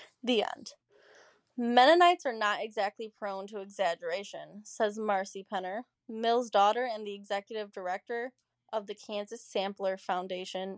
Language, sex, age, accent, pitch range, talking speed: English, female, 10-29, American, 195-225 Hz, 130 wpm